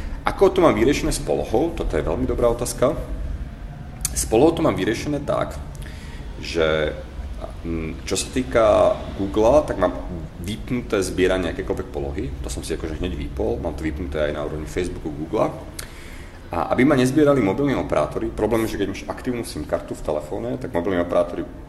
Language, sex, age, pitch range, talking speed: Slovak, male, 30-49, 75-105 Hz, 170 wpm